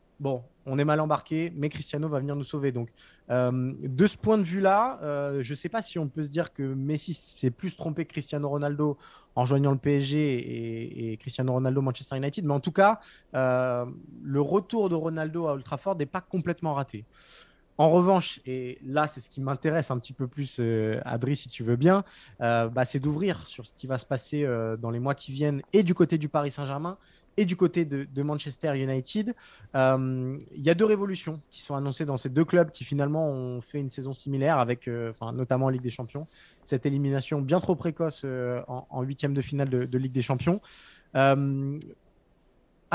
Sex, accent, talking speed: male, French, 210 wpm